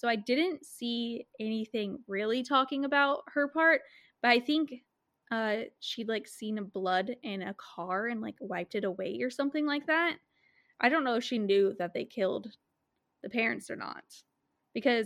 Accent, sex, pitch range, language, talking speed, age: American, female, 215-275 Hz, English, 180 wpm, 10-29